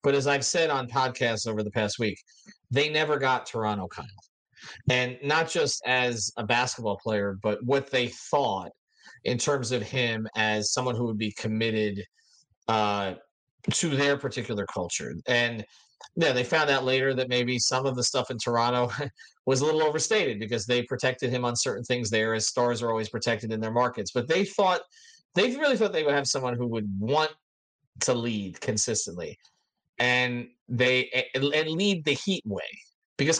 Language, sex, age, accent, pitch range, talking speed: English, male, 40-59, American, 115-140 Hz, 175 wpm